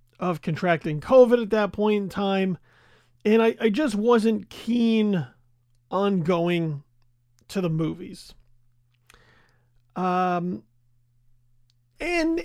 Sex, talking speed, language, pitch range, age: male, 100 wpm, English, 145-225 Hz, 40-59